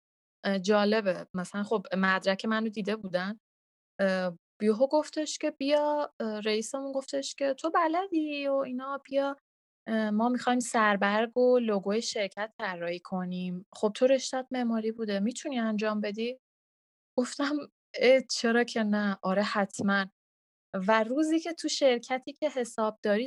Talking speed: 125 wpm